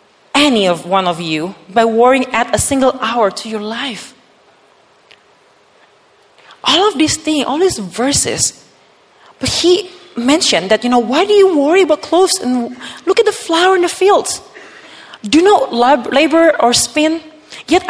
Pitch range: 200-295 Hz